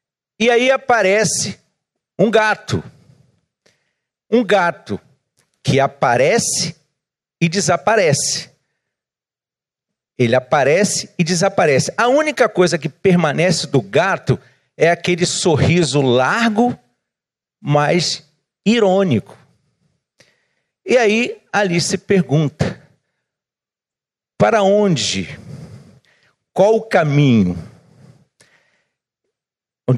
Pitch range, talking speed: 135-200 Hz, 75 wpm